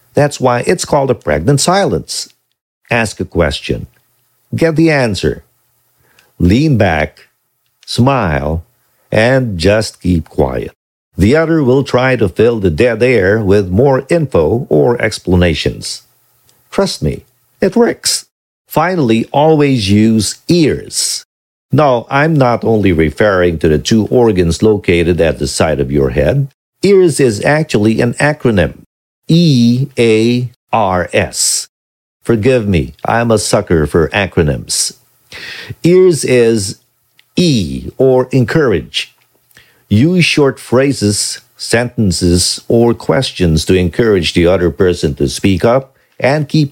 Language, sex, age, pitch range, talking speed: English, male, 50-69, 90-135 Hz, 120 wpm